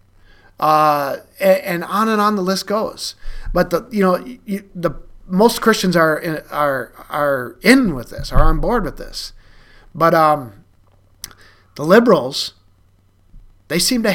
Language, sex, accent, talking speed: English, male, American, 145 wpm